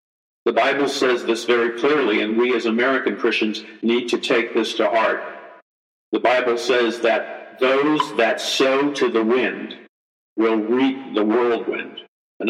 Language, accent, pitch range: English, American, 110-130 Hz